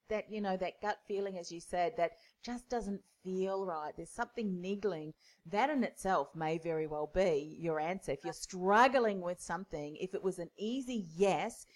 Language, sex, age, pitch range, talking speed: English, female, 40-59, 170-205 Hz, 190 wpm